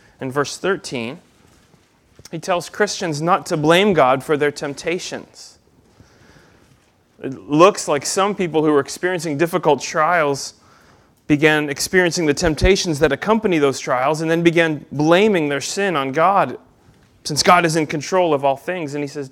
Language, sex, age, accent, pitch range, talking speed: English, male, 30-49, American, 135-170 Hz, 155 wpm